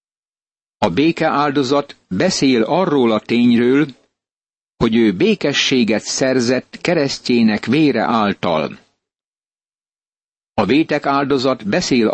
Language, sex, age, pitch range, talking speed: Hungarian, male, 60-79, 115-150 Hz, 80 wpm